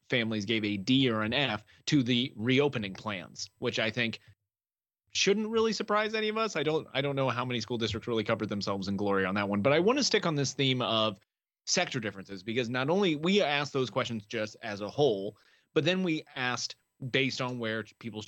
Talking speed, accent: 220 wpm, American